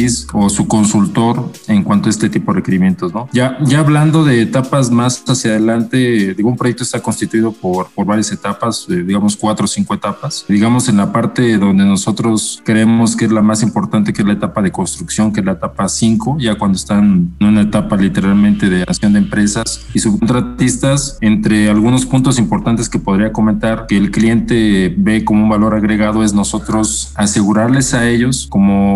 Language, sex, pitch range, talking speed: Spanish, male, 100-120 Hz, 185 wpm